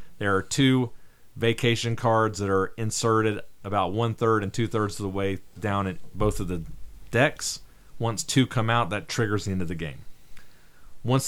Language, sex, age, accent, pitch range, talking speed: English, male, 40-59, American, 95-120 Hz, 175 wpm